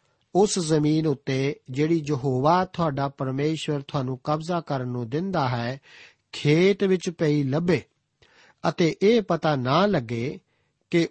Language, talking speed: Punjabi, 125 wpm